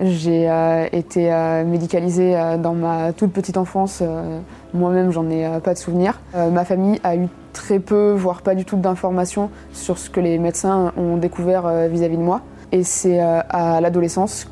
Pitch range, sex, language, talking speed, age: 165-185 Hz, female, French, 160 wpm, 20-39